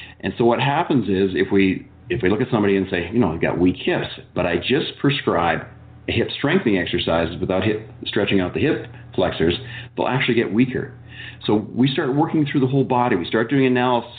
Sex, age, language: male, 40-59, English